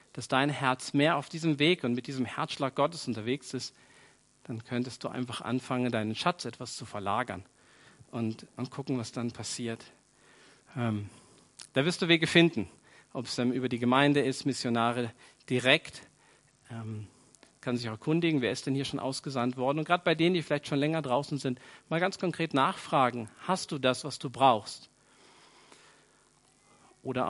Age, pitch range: 50-69, 120-140 Hz